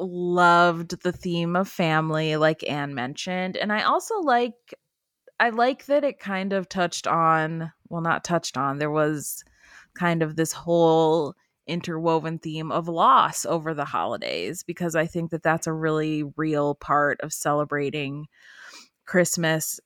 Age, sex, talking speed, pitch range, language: 20-39, female, 150 wpm, 155-180 Hz, English